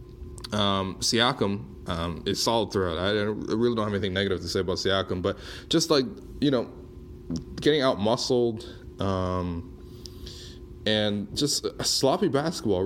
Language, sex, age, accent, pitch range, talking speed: English, male, 20-39, American, 95-125 Hz, 145 wpm